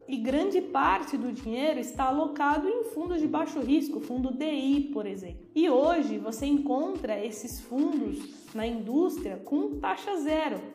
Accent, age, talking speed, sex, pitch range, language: Brazilian, 20-39, 150 wpm, female, 250-315 Hz, Portuguese